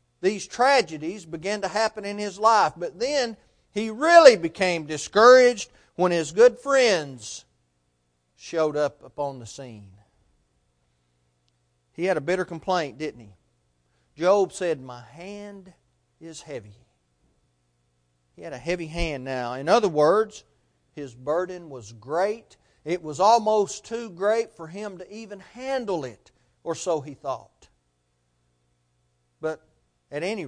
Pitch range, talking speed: 120-200 Hz, 130 wpm